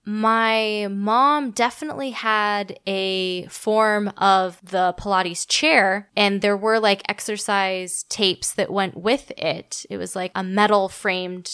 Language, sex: English, female